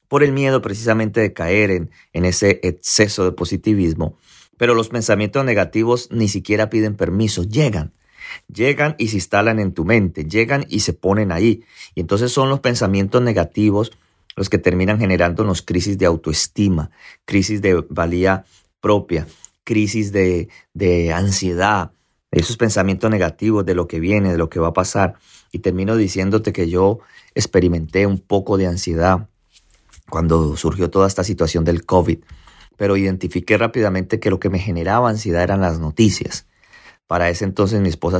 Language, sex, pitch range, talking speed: Spanish, male, 90-105 Hz, 160 wpm